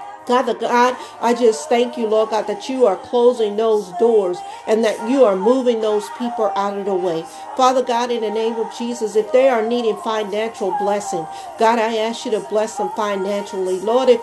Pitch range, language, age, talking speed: 210-245 Hz, English, 50-69, 200 wpm